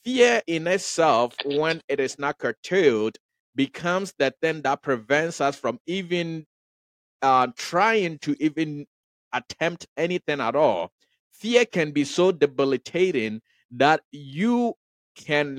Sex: male